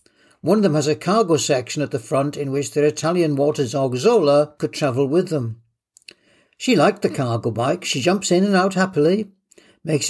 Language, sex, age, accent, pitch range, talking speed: English, male, 60-79, British, 135-170 Hz, 195 wpm